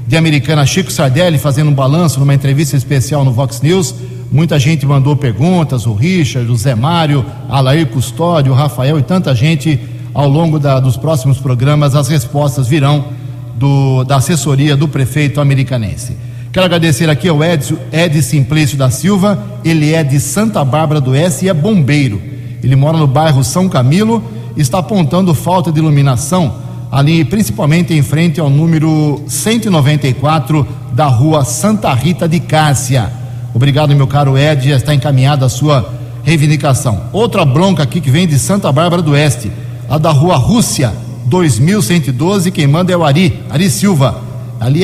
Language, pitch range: Portuguese, 130-160 Hz